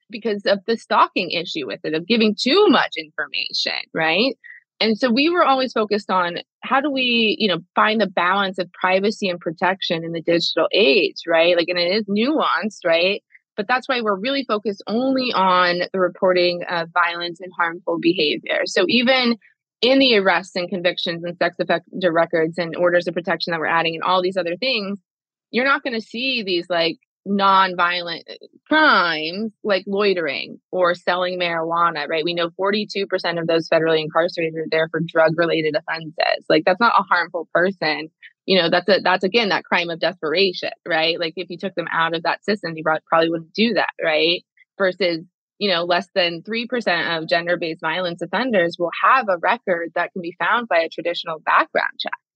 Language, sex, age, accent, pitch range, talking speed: English, female, 20-39, American, 170-215 Hz, 185 wpm